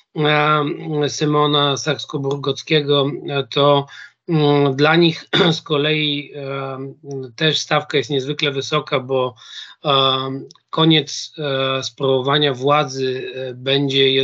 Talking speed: 75 wpm